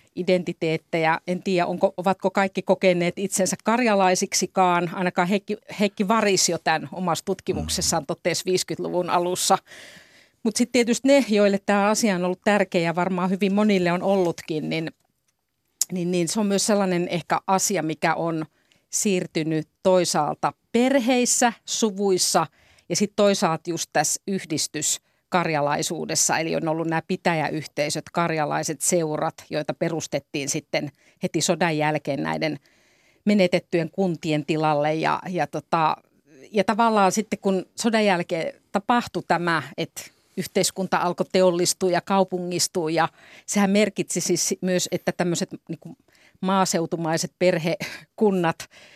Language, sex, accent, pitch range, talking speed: Finnish, female, native, 165-195 Hz, 125 wpm